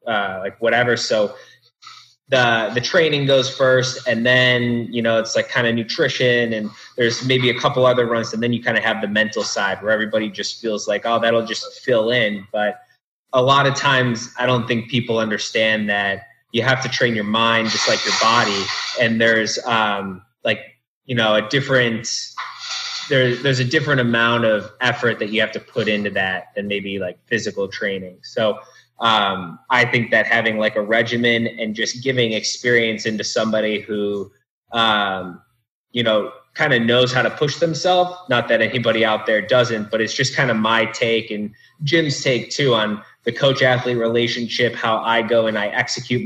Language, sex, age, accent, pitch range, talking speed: English, male, 20-39, American, 110-125 Hz, 190 wpm